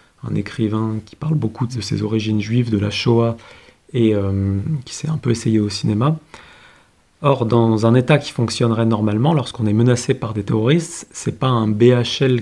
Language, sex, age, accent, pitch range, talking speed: French, male, 30-49, French, 110-135 Hz, 185 wpm